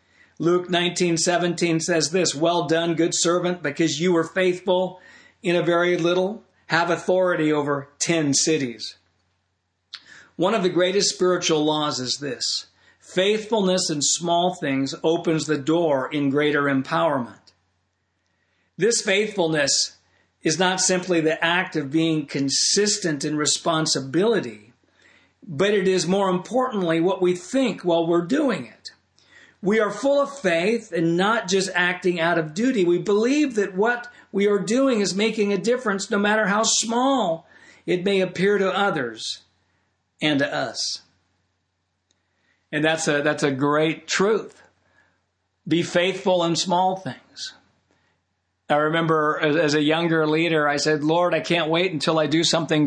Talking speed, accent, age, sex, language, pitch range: 145 wpm, American, 50-69, male, English, 150-185 Hz